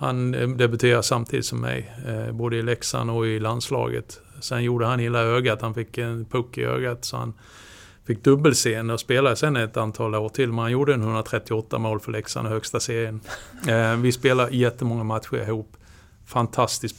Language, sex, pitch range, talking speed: Swedish, male, 110-125 Hz, 175 wpm